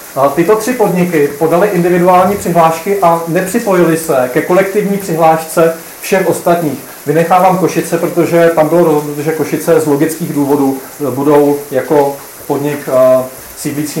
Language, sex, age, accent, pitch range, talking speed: Czech, male, 40-59, native, 145-180 Hz, 130 wpm